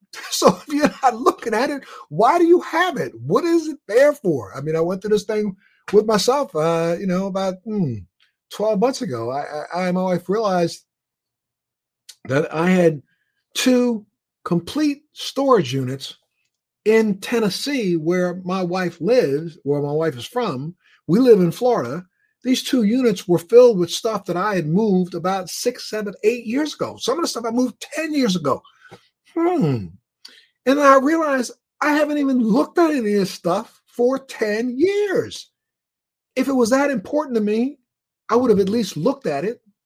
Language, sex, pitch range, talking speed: English, male, 170-255 Hz, 180 wpm